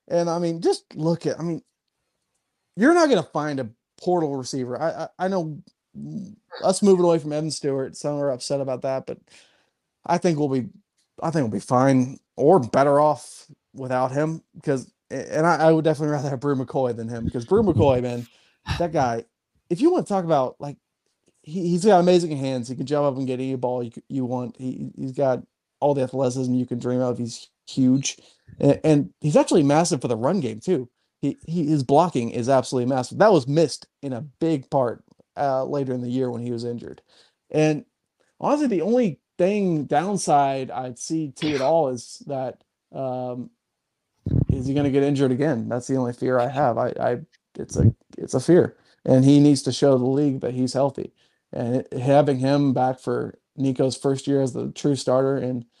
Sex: male